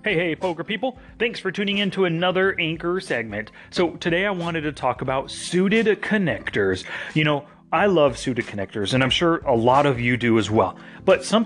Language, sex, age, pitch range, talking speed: English, male, 30-49, 120-160 Hz, 205 wpm